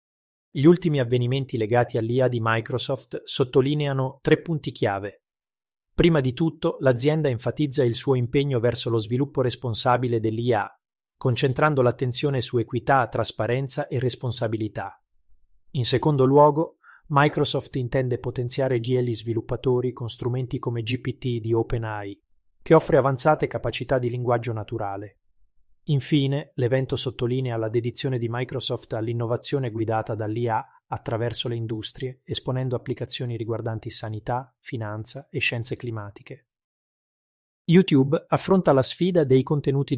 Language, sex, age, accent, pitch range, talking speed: Italian, male, 30-49, native, 115-140 Hz, 120 wpm